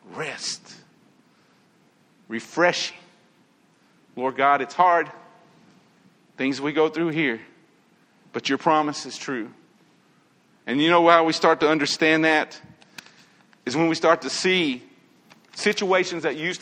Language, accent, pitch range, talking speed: English, American, 150-185 Hz, 125 wpm